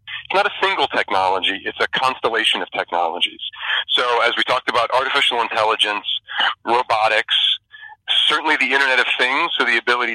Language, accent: English, American